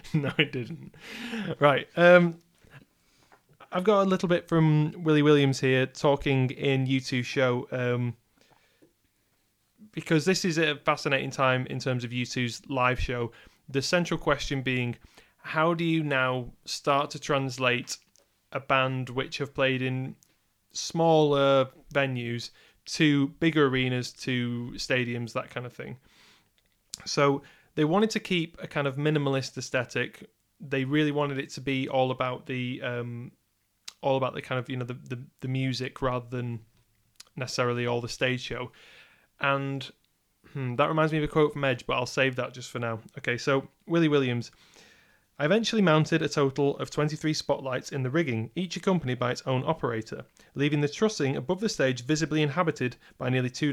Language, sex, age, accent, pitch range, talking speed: English, male, 30-49, British, 125-155 Hz, 165 wpm